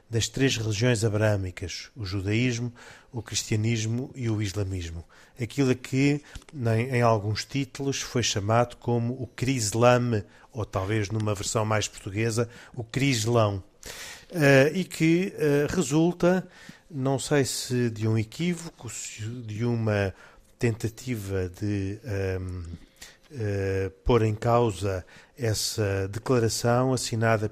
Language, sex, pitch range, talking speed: Portuguese, male, 105-125 Hz, 110 wpm